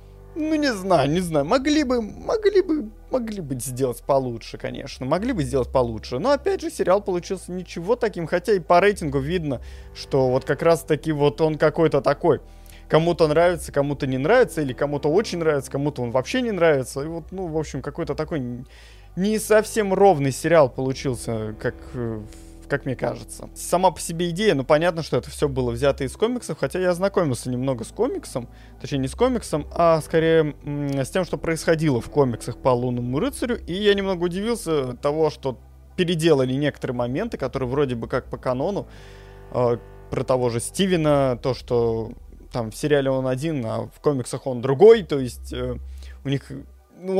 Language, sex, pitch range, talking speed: Russian, male, 125-175 Hz, 180 wpm